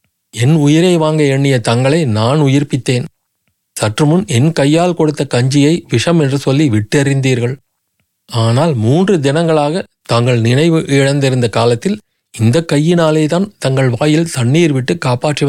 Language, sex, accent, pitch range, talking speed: Tamil, male, native, 120-155 Hz, 120 wpm